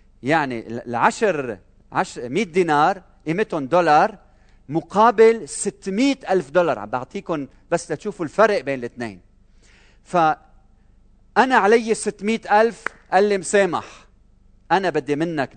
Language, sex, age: Arabic, male, 40-59